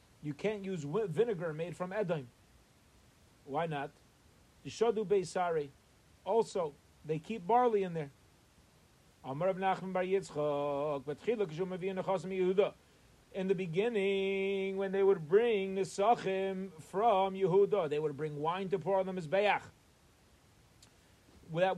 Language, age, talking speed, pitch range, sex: English, 40-59, 100 wpm, 155-200 Hz, male